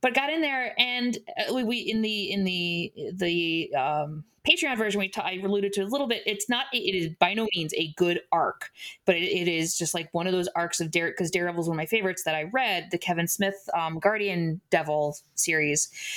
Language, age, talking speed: English, 20-39, 225 wpm